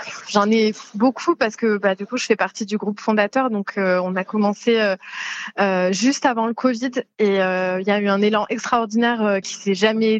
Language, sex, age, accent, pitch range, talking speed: French, female, 20-39, French, 200-240 Hz, 230 wpm